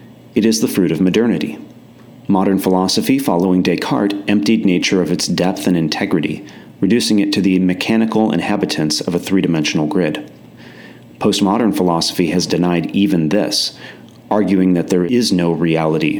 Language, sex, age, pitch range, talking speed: English, male, 30-49, 85-100 Hz, 145 wpm